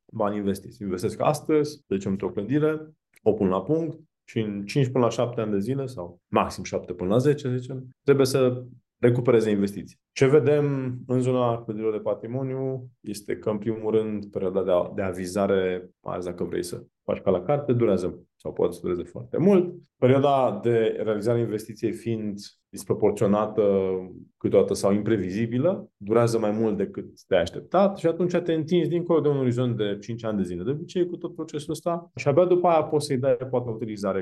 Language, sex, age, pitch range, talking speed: Romanian, male, 20-39, 110-150 Hz, 195 wpm